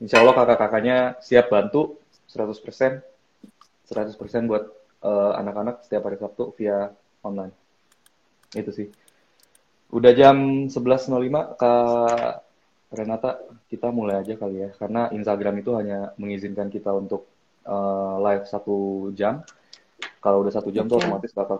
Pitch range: 100-115 Hz